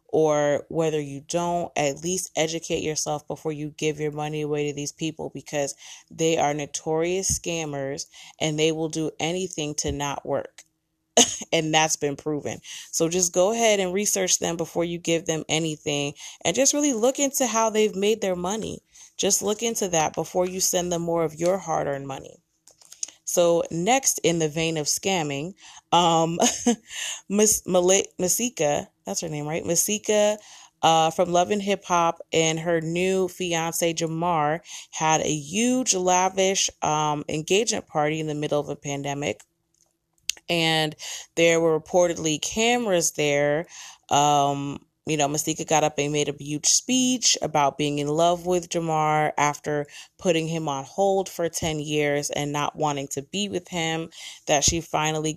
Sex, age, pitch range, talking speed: female, 20-39, 150-180 Hz, 160 wpm